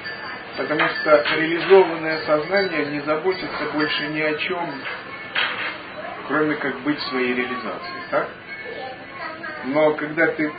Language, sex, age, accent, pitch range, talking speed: Russian, male, 40-59, native, 135-170 Hz, 110 wpm